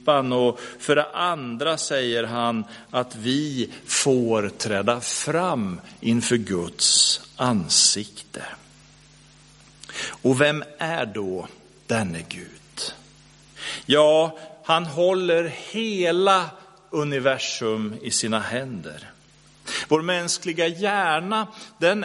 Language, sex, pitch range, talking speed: Swedish, male, 120-180 Hz, 85 wpm